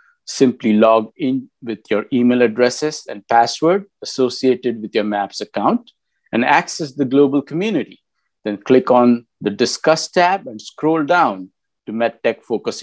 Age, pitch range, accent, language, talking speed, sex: 50-69, 115-180 Hz, Indian, English, 145 wpm, male